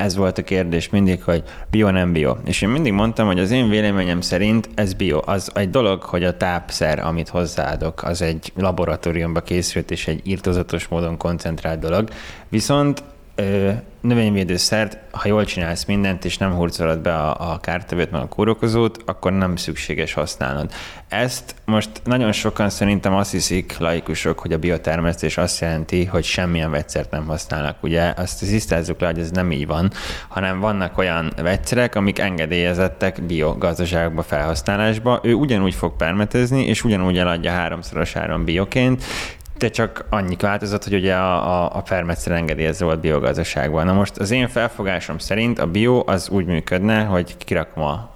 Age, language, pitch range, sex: 20-39, Hungarian, 85-100 Hz, male